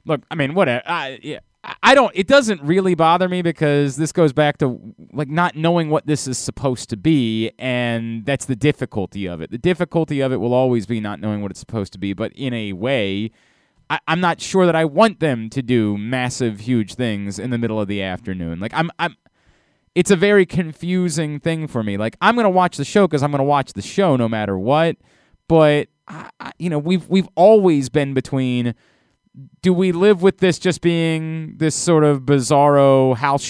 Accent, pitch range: American, 125-170 Hz